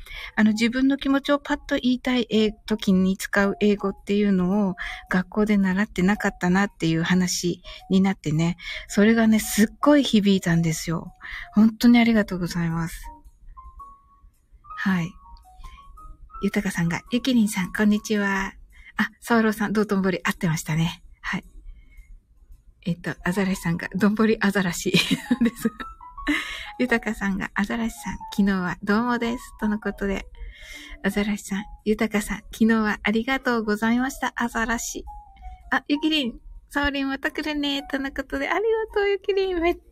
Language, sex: Japanese, female